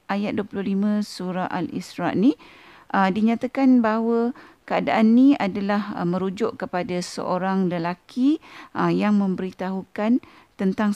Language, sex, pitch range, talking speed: Malay, female, 180-230 Hz, 100 wpm